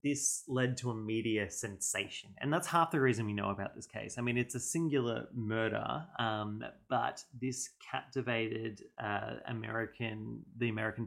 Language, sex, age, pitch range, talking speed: English, male, 30-49, 110-130 Hz, 165 wpm